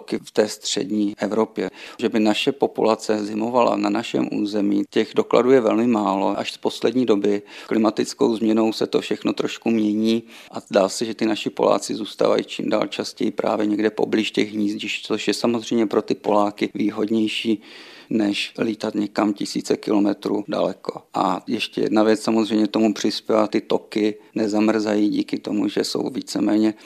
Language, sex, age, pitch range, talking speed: Czech, male, 40-59, 105-110 Hz, 160 wpm